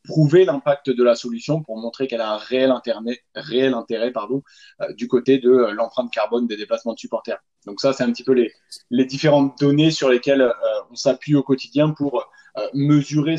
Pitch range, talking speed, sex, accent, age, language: 115-140 Hz, 200 wpm, male, French, 20-39, French